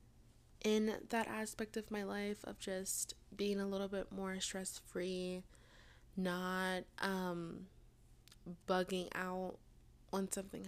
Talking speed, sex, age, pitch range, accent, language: 110 wpm, female, 20-39, 175-200 Hz, American, English